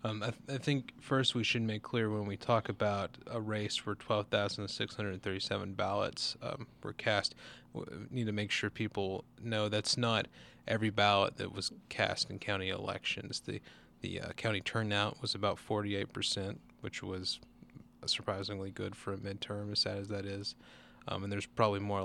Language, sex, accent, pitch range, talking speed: English, male, American, 100-115 Hz, 175 wpm